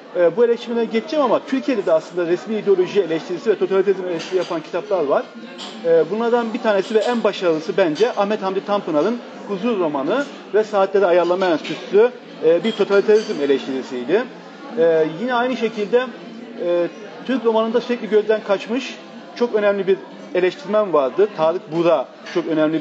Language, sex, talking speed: Turkish, male, 150 wpm